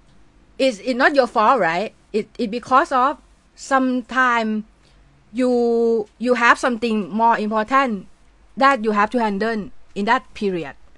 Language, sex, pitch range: Thai, female, 195-255 Hz